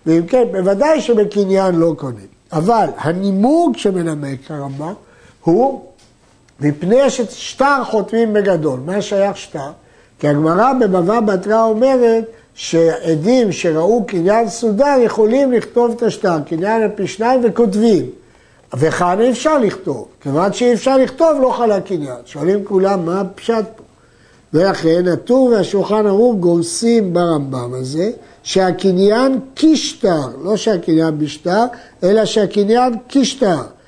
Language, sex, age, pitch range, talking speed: Hebrew, male, 60-79, 165-235 Hz, 120 wpm